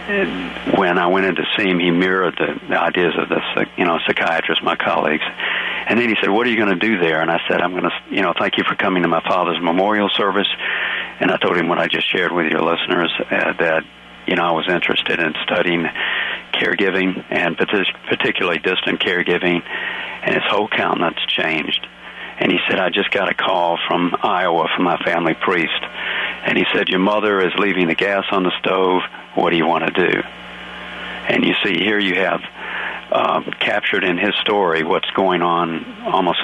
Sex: male